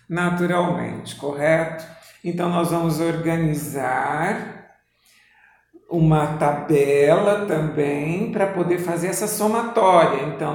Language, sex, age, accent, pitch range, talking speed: Portuguese, male, 50-69, Brazilian, 150-180 Hz, 85 wpm